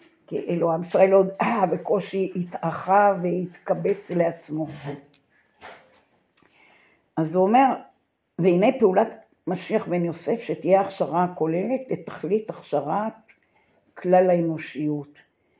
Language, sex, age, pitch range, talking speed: Hebrew, female, 60-79, 160-195 Hz, 90 wpm